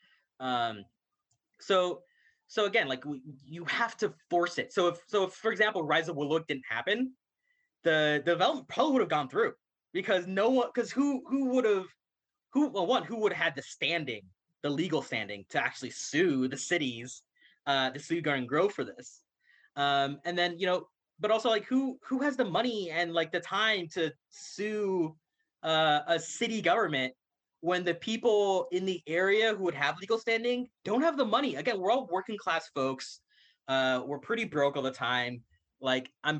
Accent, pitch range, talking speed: American, 135-210 Hz, 190 wpm